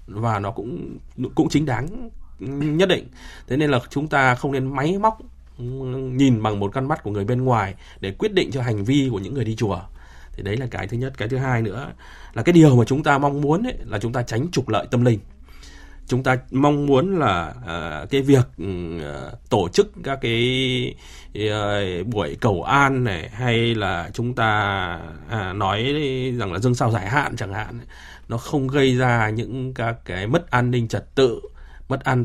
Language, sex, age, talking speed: Vietnamese, male, 20-39, 195 wpm